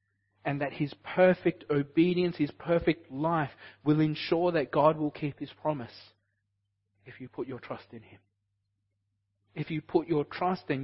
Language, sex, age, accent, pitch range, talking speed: English, male, 30-49, Australian, 100-165 Hz, 160 wpm